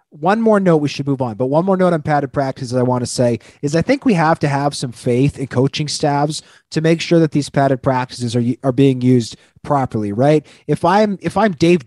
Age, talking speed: 30-49, 245 wpm